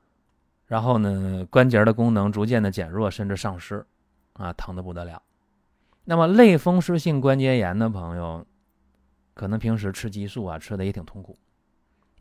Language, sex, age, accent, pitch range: Chinese, male, 30-49, native, 90-130 Hz